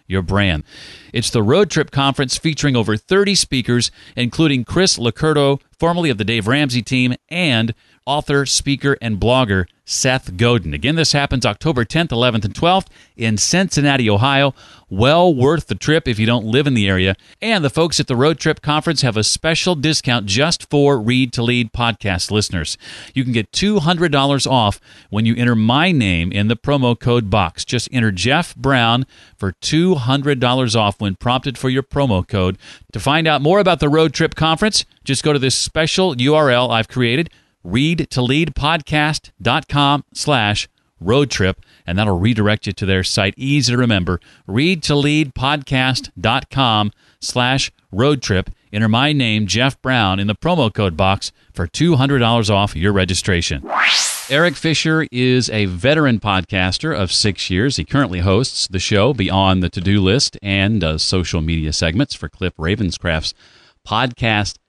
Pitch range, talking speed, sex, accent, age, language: 105-145 Hz, 165 wpm, male, American, 40-59, English